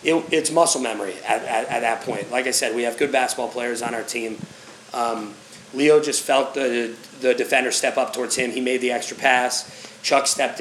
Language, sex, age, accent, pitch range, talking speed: English, male, 30-49, American, 120-145 Hz, 215 wpm